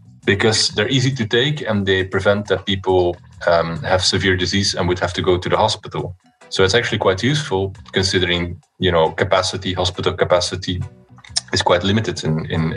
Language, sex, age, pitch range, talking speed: English, male, 30-49, 90-100 Hz, 180 wpm